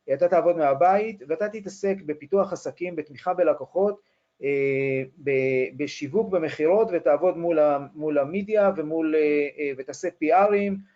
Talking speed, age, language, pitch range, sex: 90 wpm, 40-59, Hebrew, 145-190 Hz, male